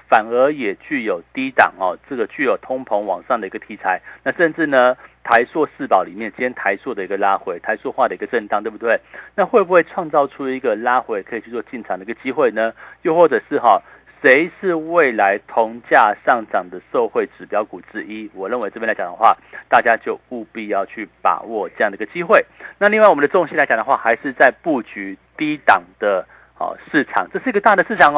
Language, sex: Chinese, male